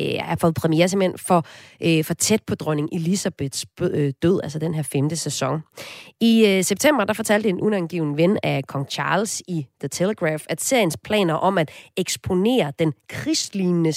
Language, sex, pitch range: Danish, female, 155-195 Hz